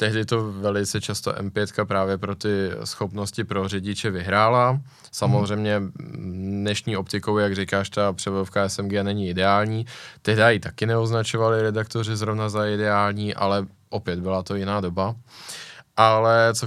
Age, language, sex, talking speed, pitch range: 20-39, Czech, male, 135 wpm, 100-110 Hz